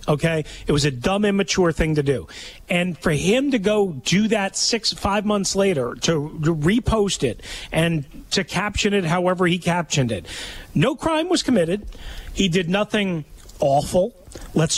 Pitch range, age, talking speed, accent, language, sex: 150-205 Hz, 40-59, 160 wpm, American, English, male